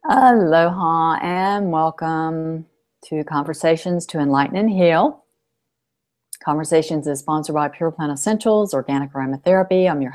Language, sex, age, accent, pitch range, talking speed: English, female, 50-69, American, 145-170 Hz, 120 wpm